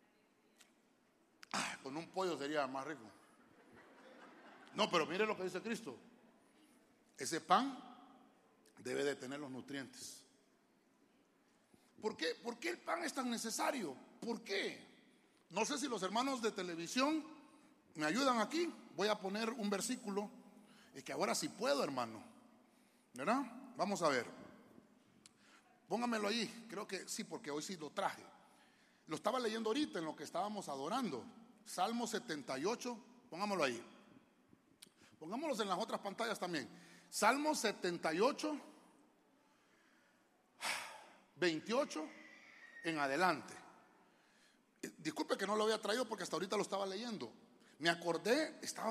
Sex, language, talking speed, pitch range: male, Spanish, 130 wpm, 185-255 Hz